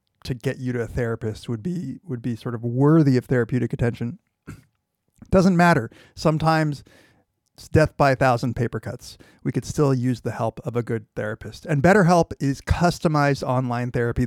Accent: American